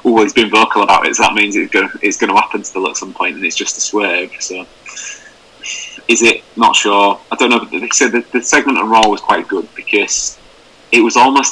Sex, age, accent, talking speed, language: male, 20-39, British, 250 wpm, English